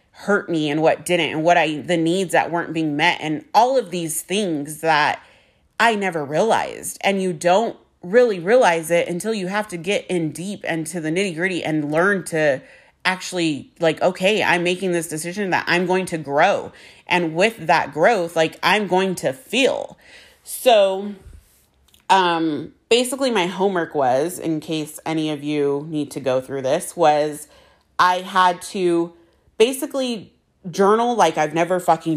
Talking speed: 170 wpm